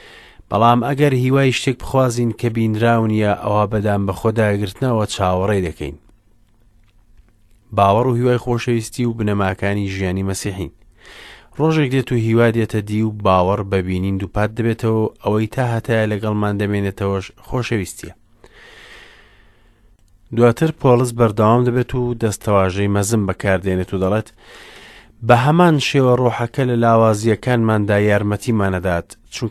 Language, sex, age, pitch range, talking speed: English, male, 30-49, 100-120 Hz, 135 wpm